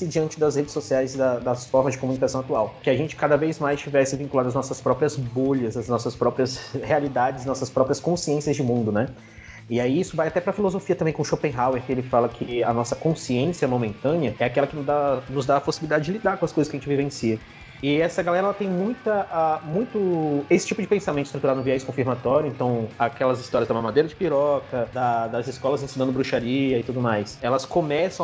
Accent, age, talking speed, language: Brazilian, 20-39, 215 wpm, Portuguese